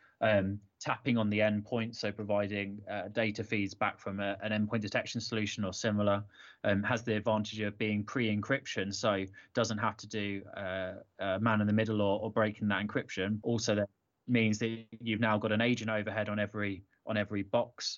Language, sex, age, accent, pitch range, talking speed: English, male, 20-39, British, 100-115 Hz, 190 wpm